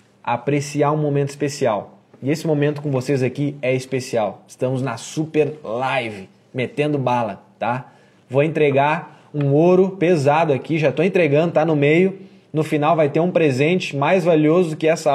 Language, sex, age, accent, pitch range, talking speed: Portuguese, male, 20-39, Brazilian, 145-195 Hz, 165 wpm